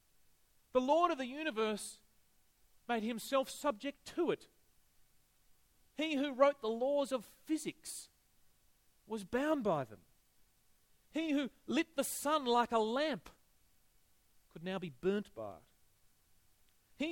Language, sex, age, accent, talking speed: English, male, 40-59, Australian, 125 wpm